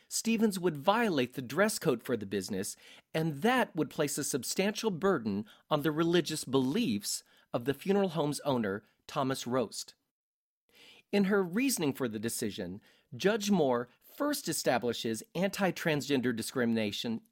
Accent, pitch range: American, 125-205 Hz